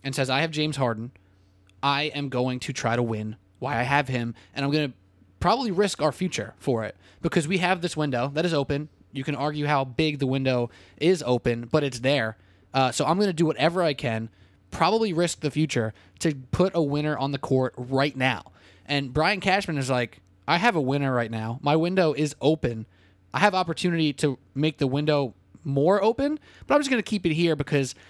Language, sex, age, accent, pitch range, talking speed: English, male, 20-39, American, 125-170 Hz, 220 wpm